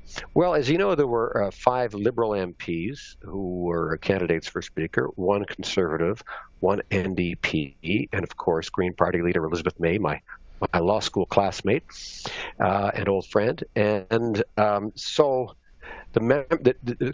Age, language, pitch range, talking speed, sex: 50-69, English, 95-115 Hz, 145 wpm, male